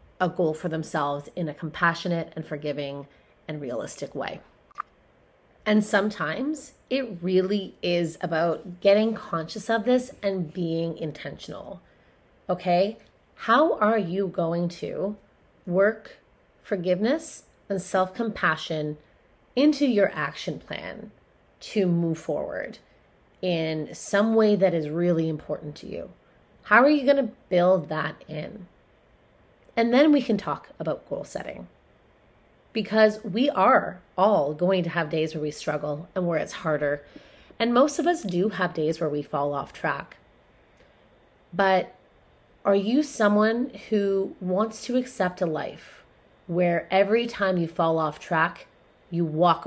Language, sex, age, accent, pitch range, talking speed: English, female, 30-49, American, 160-215 Hz, 135 wpm